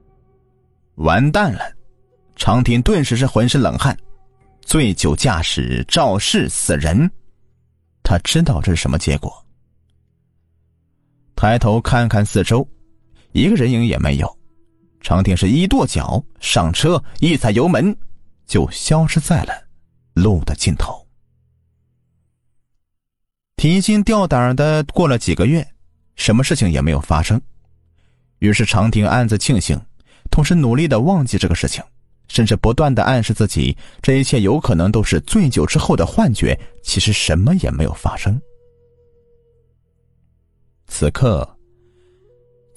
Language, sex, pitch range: Chinese, male, 90-130 Hz